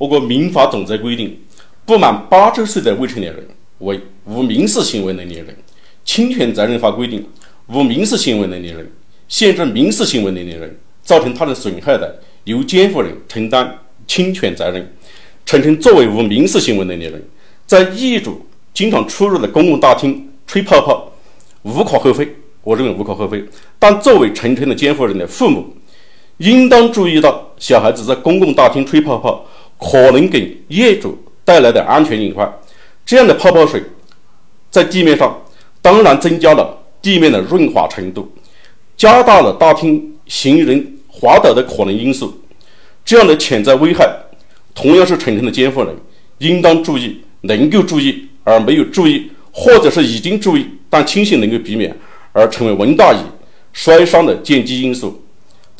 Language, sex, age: Chinese, male, 50-69